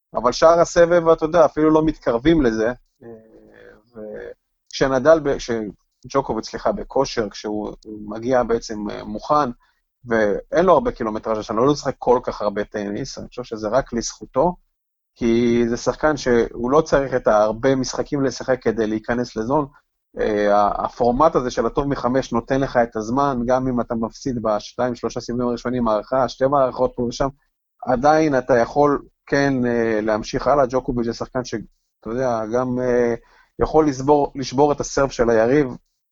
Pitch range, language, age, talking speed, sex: 115-140 Hz, Hebrew, 30-49, 145 wpm, male